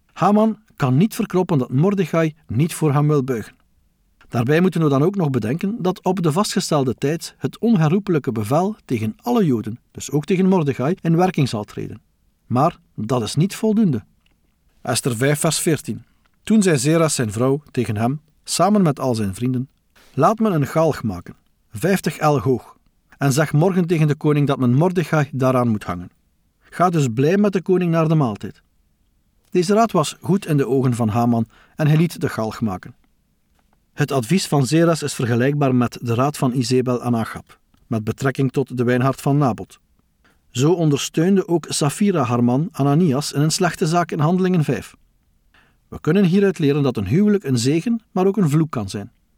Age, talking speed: 50-69, 180 wpm